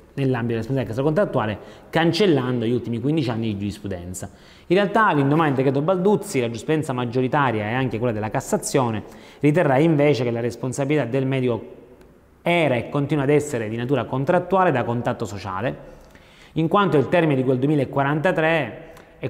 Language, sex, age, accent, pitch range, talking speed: Italian, male, 30-49, native, 120-155 Hz, 160 wpm